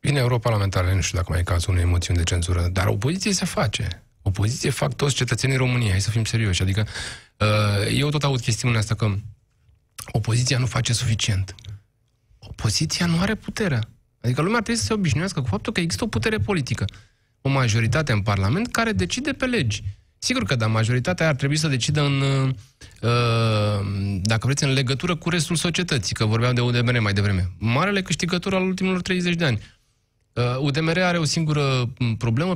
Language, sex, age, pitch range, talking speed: Romanian, male, 20-39, 110-155 Hz, 180 wpm